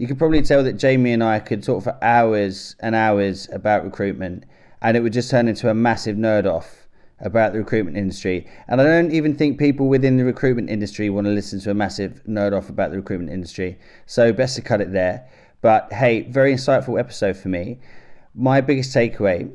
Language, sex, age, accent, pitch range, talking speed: English, male, 30-49, British, 100-120 Hz, 205 wpm